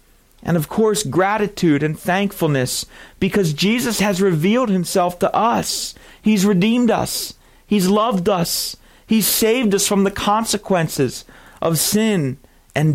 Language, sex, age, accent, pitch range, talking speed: English, male, 40-59, American, 130-200 Hz, 130 wpm